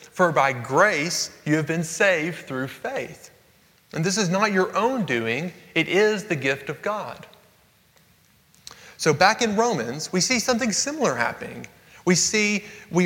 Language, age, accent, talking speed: English, 30-49, American, 155 wpm